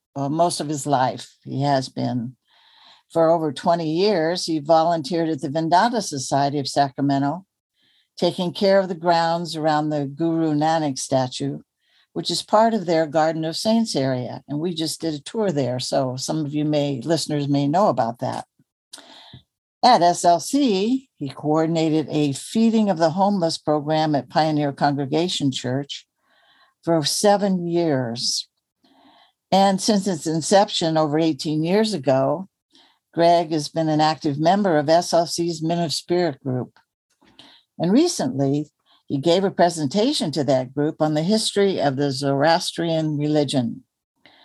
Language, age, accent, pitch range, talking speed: English, 60-79, American, 145-175 Hz, 145 wpm